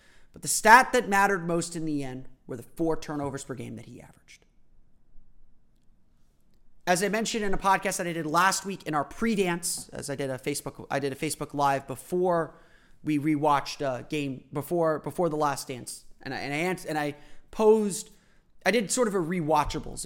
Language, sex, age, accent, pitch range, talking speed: English, male, 30-49, American, 145-195 Hz, 195 wpm